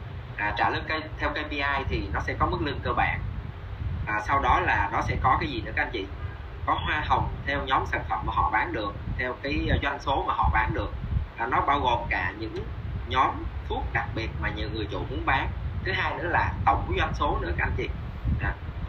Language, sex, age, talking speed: Vietnamese, male, 20-39, 230 wpm